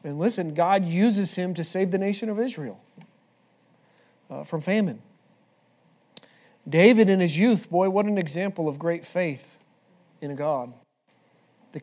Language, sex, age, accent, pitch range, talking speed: English, male, 40-59, American, 150-200 Hz, 145 wpm